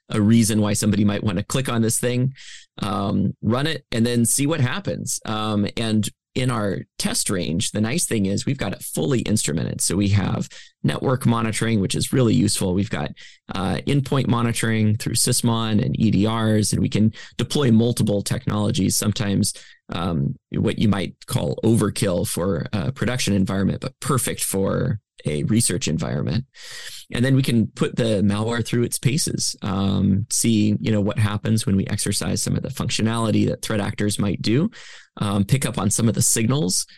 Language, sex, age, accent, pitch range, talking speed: English, male, 20-39, American, 105-120 Hz, 180 wpm